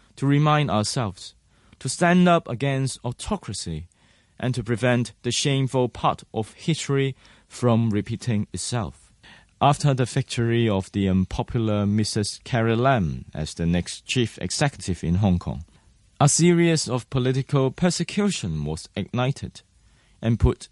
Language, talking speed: English, 130 wpm